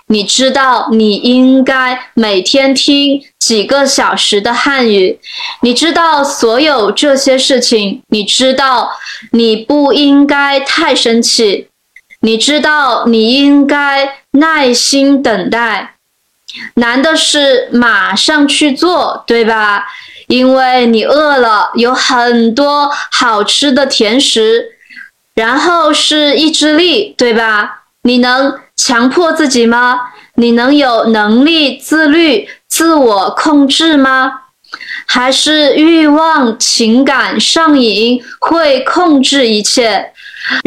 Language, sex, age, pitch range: Chinese, female, 20-39, 235-300 Hz